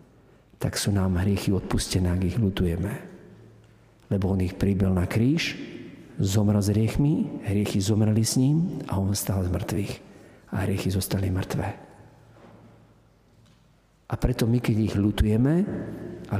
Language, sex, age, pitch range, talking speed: Slovak, male, 50-69, 100-120 Hz, 135 wpm